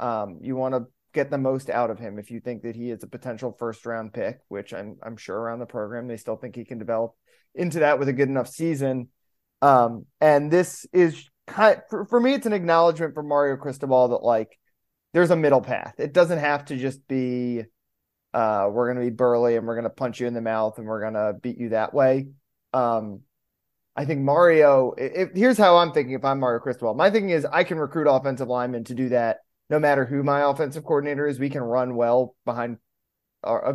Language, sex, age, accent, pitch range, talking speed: English, male, 20-39, American, 115-145 Hz, 230 wpm